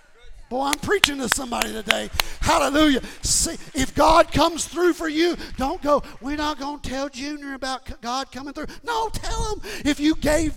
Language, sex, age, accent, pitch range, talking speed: English, male, 40-59, American, 175-295 Hz, 185 wpm